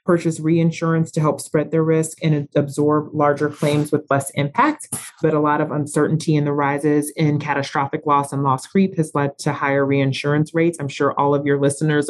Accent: American